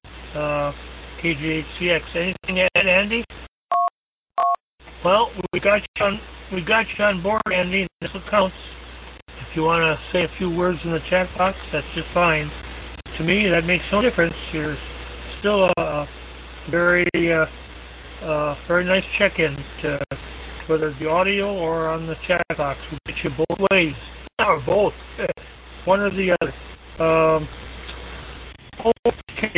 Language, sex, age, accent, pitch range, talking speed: English, male, 60-79, American, 145-185 Hz, 155 wpm